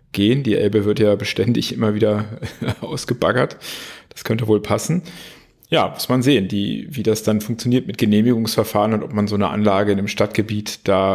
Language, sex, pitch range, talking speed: German, male, 105-125 Hz, 185 wpm